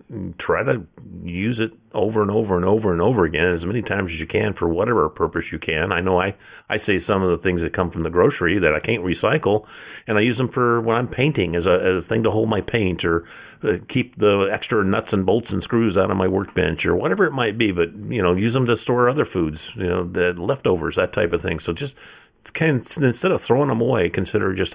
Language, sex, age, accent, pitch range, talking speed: English, male, 50-69, American, 90-110 Hz, 245 wpm